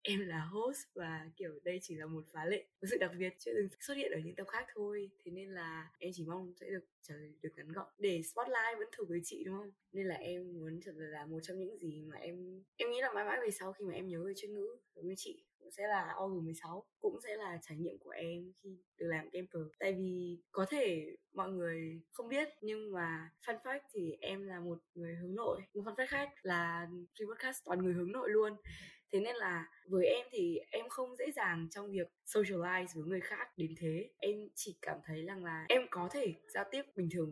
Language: Vietnamese